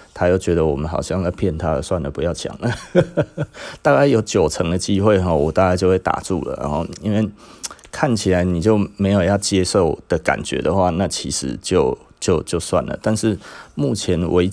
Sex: male